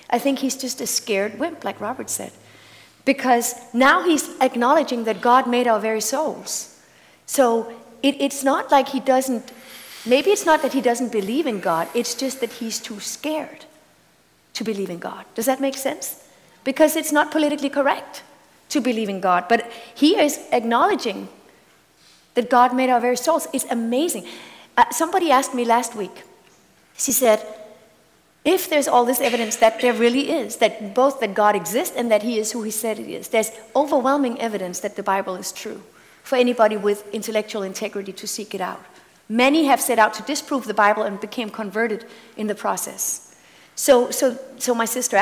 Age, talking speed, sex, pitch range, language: 40-59, 180 wpm, female, 220-270 Hz, English